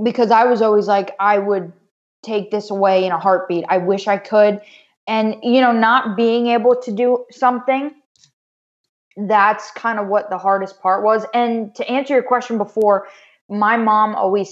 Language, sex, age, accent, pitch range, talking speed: English, female, 20-39, American, 185-220 Hz, 180 wpm